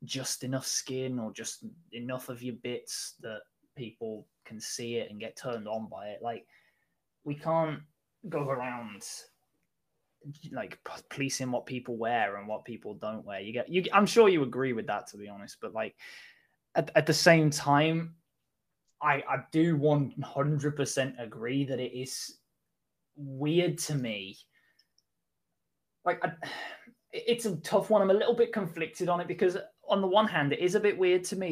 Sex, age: male, 10-29